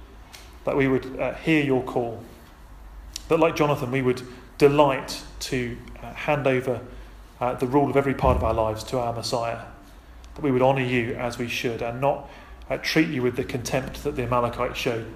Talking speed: 195 wpm